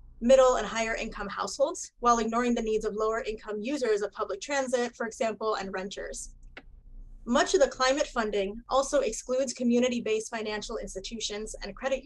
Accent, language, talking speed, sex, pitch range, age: American, English, 160 wpm, female, 205-255 Hz, 20-39